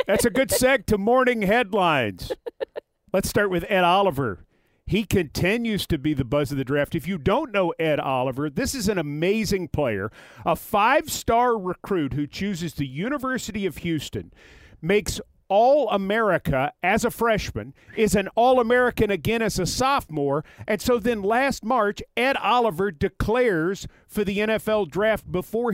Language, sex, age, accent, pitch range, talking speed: English, male, 50-69, American, 170-230 Hz, 155 wpm